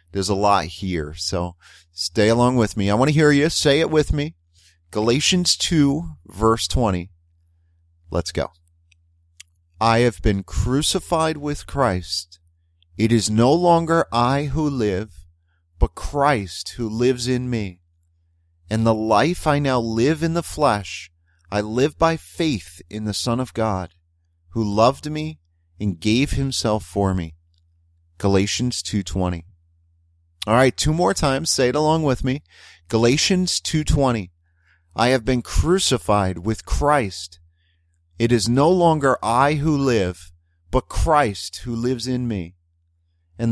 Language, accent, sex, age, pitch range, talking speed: English, American, male, 30-49, 85-130 Hz, 145 wpm